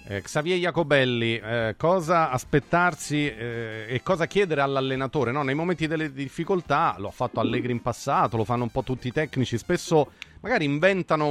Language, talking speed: Italian, 170 wpm